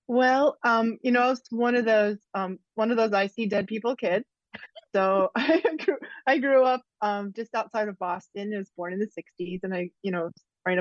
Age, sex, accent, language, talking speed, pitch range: 30-49, female, American, English, 215 wpm, 195-240 Hz